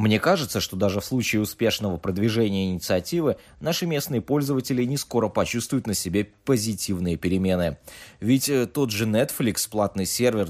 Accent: native